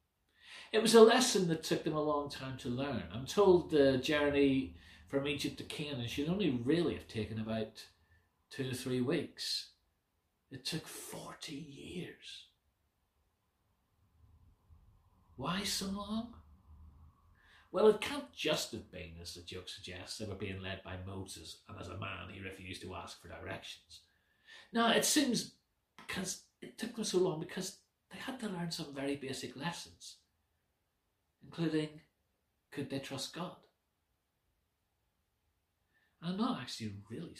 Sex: male